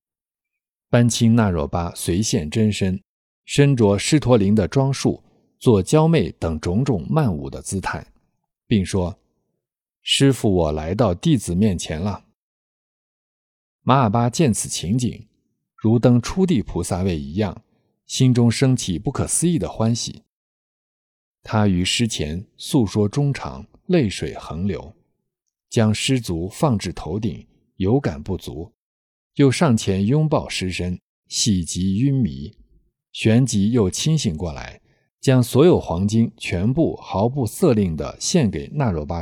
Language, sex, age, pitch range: Chinese, male, 50-69, 90-130 Hz